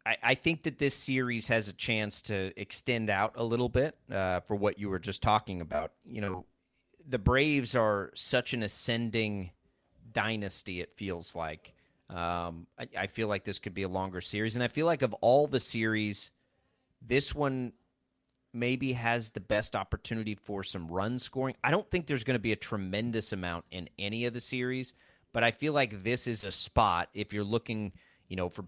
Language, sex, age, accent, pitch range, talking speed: English, male, 30-49, American, 95-125 Hz, 195 wpm